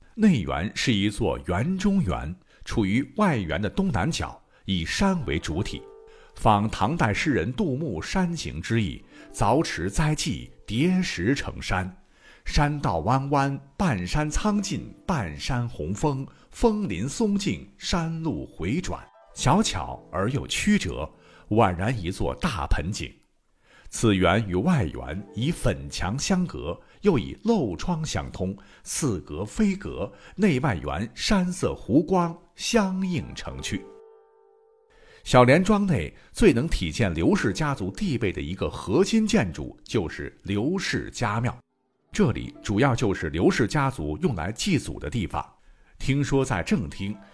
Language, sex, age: Chinese, male, 60-79